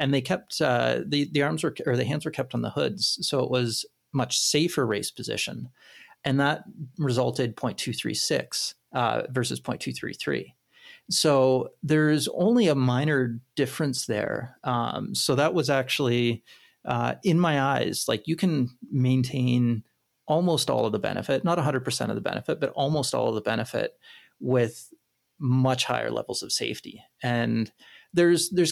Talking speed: 155 wpm